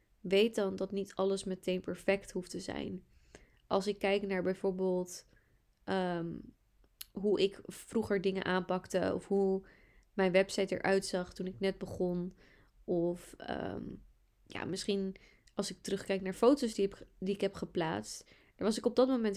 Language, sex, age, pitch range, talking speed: Dutch, female, 20-39, 185-210 Hz, 150 wpm